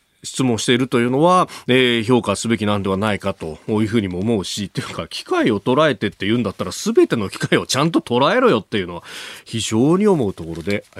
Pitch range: 110-170 Hz